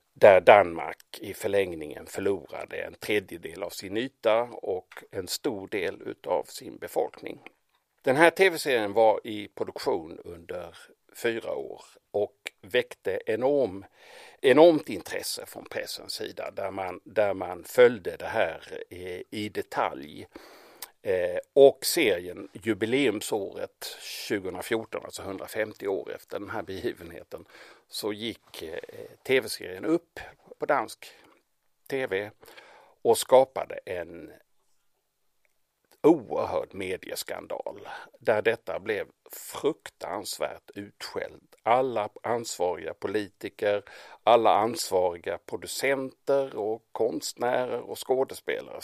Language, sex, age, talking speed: Swedish, male, 60-79, 100 wpm